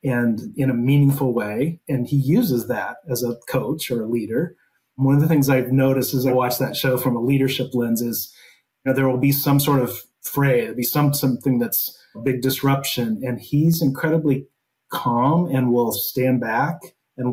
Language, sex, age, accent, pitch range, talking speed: English, male, 40-59, American, 120-140 Hz, 200 wpm